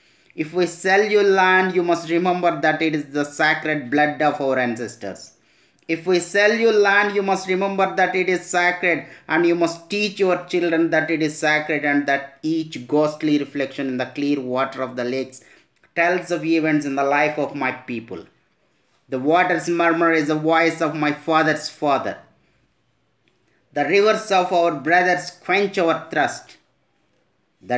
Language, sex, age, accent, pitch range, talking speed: Telugu, male, 30-49, native, 145-180 Hz, 170 wpm